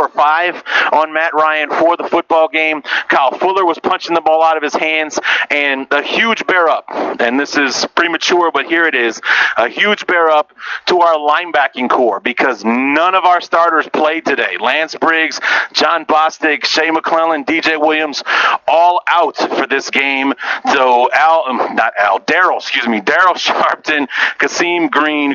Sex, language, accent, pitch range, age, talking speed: male, English, American, 135-165 Hz, 40-59, 165 wpm